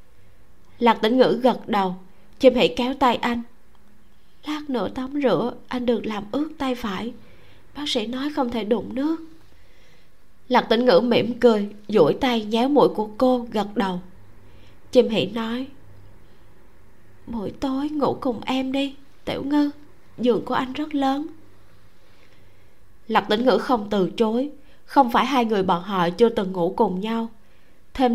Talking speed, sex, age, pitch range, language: 160 wpm, female, 20-39, 205-255 Hz, Vietnamese